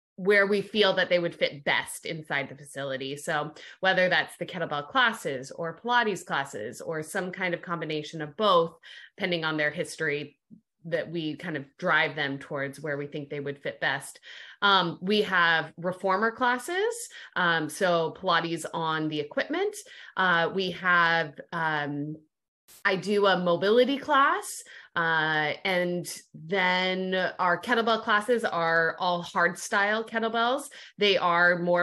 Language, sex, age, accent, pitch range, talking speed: English, female, 20-39, American, 160-200 Hz, 150 wpm